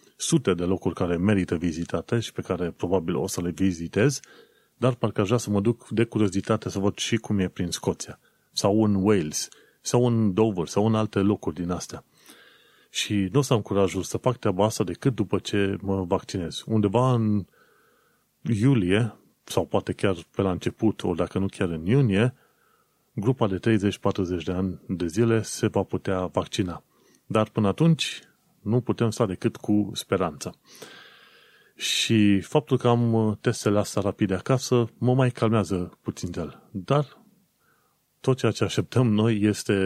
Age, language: 30-49, Romanian